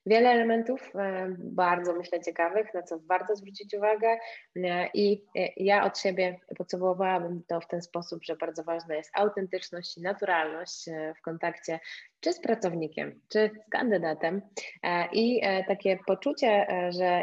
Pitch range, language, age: 160-190 Hz, Polish, 20-39